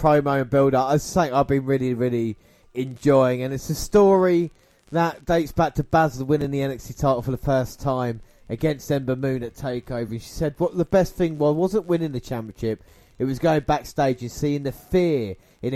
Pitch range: 120-155 Hz